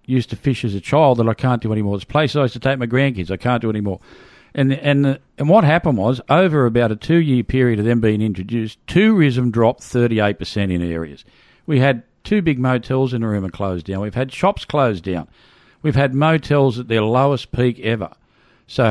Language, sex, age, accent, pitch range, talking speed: English, male, 50-69, Australian, 105-135 Hz, 220 wpm